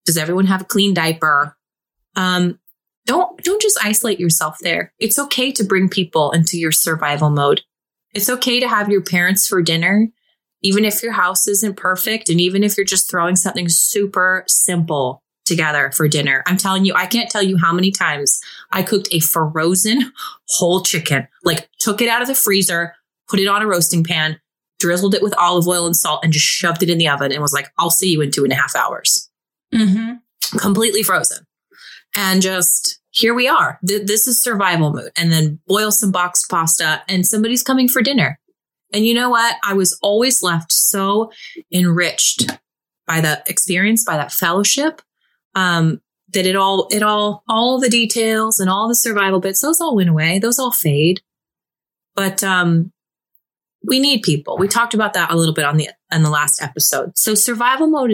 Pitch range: 165-220 Hz